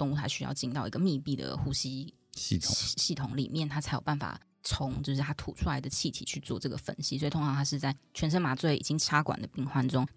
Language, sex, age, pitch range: Chinese, female, 20-39, 130-155 Hz